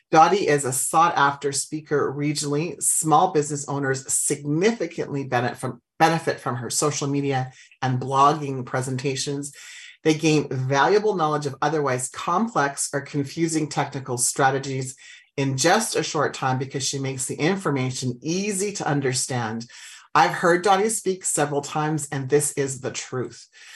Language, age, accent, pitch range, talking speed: English, 40-59, American, 135-160 Hz, 140 wpm